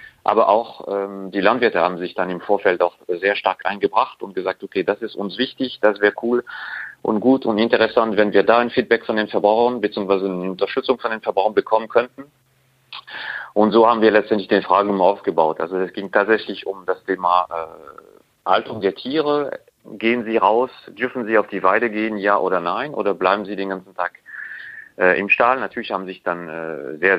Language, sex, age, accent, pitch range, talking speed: German, male, 40-59, German, 95-115 Hz, 200 wpm